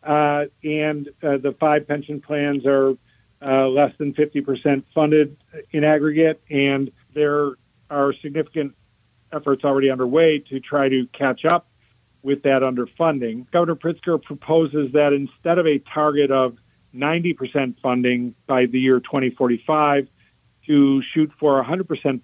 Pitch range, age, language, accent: 130-150 Hz, 50-69, English, American